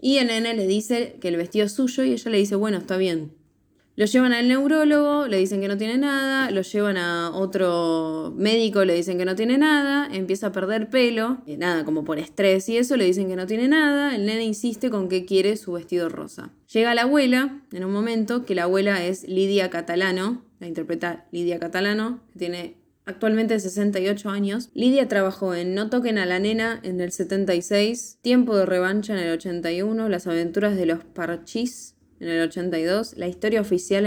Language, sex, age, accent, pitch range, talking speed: Spanish, female, 10-29, Argentinian, 180-230 Hz, 200 wpm